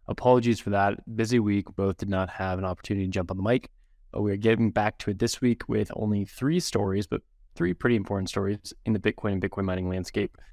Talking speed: 230 wpm